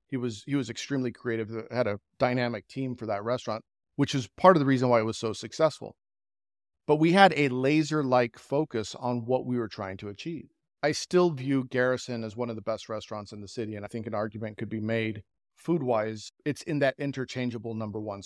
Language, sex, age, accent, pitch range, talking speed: English, male, 40-59, American, 110-135 Hz, 215 wpm